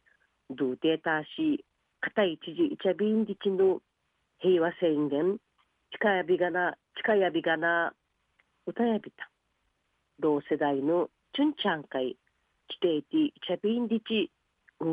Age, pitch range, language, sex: 50-69, 155-235 Hz, Japanese, female